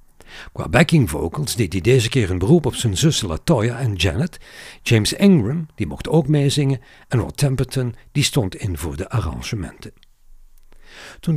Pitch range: 95-145 Hz